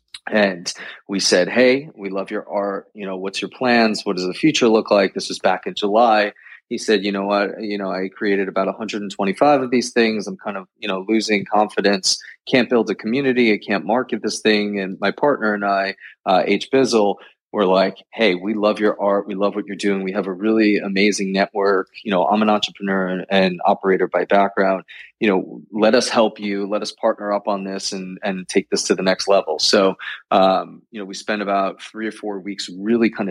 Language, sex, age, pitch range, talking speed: English, male, 20-39, 95-110 Hz, 220 wpm